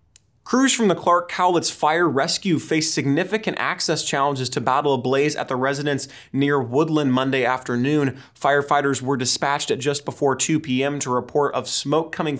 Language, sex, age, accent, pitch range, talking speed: English, male, 20-39, American, 130-145 Hz, 170 wpm